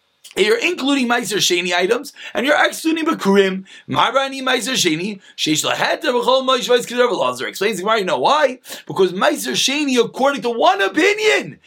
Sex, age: male, 30-49